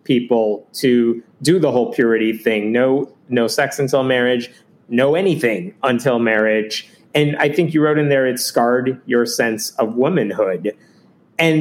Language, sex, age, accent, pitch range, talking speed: English, male, 30-49, American, 115-150 Hz, 155 wpm